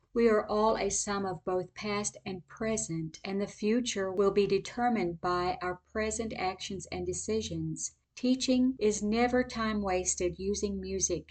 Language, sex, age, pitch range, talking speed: English, female, 50-69, 180-220 Hz, 155 wpm